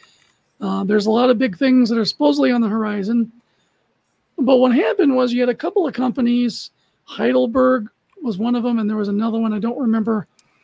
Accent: American